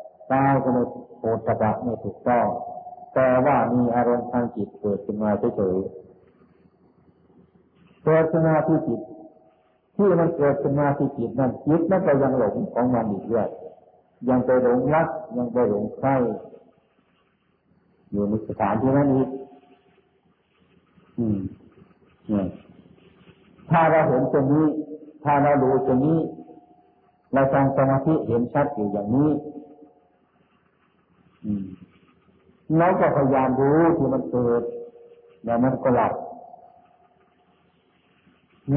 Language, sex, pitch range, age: Thai, male, 120-160 Hz, 50-69